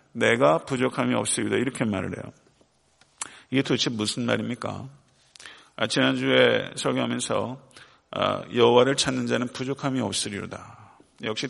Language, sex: Korean, male